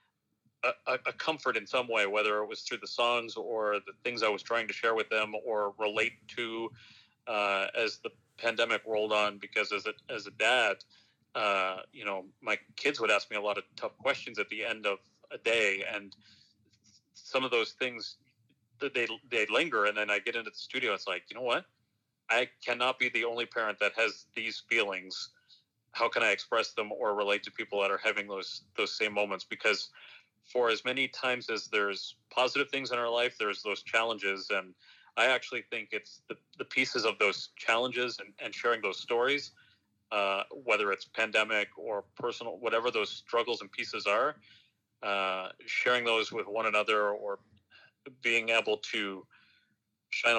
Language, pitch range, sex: English, 100-120 Hz, male